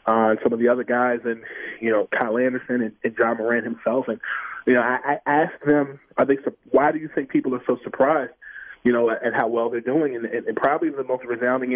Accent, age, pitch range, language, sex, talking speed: American, 20-39, 120-135 Hz, English, male, 250 wpm